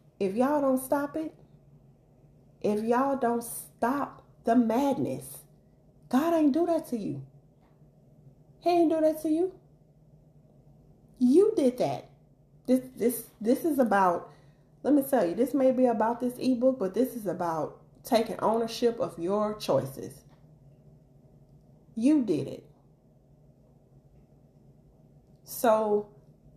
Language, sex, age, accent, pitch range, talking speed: English, female, 30-49, American, 150-235 Hz, 120 wpm